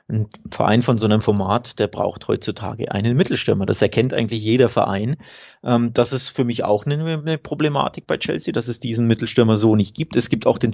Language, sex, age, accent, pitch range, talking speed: German, male, 30-49, German, 115-155 Hz, 200 wpm